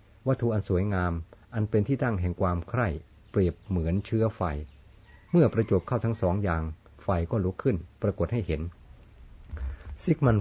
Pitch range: 85-105 Hz